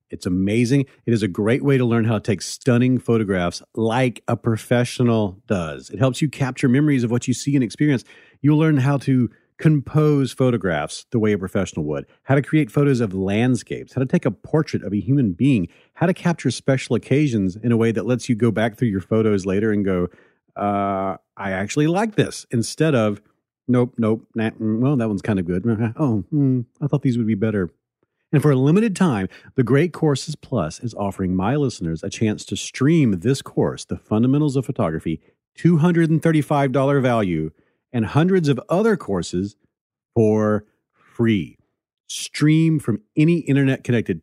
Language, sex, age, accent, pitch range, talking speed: English, male, 40-59, American, 105-140 Hz, 180 wpm